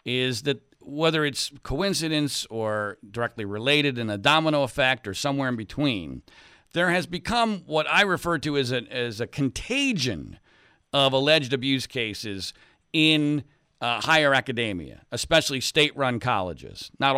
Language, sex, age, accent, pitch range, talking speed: English, male, 50-69, American, 120-170 Hz, 135 wpm